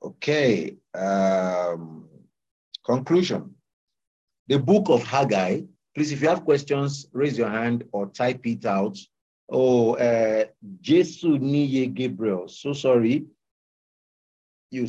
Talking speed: 105 wpm